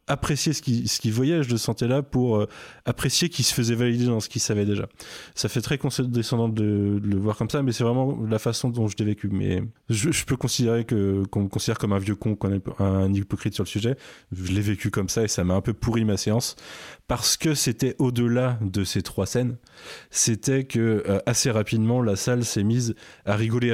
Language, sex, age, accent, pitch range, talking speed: French, male, 20-39, French, 105-125 Hz, 230 wpm